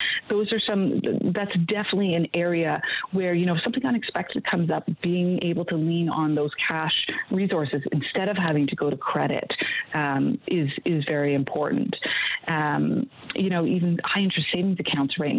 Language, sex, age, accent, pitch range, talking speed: English, female, 40-59, American, 150-185 Hz, 170 wpm